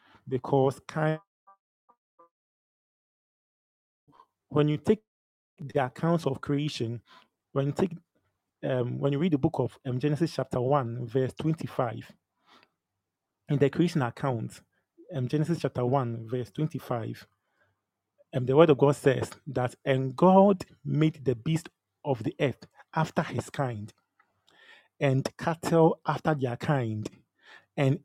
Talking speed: 125 wpm